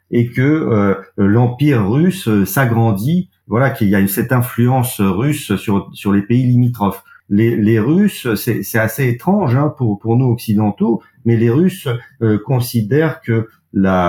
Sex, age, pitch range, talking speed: male, 50-69, 105-135 Hz, 160 wpm